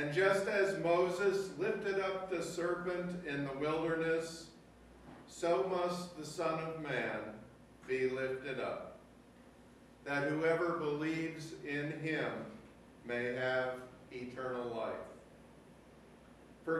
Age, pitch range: 50-69, 130-165 Hz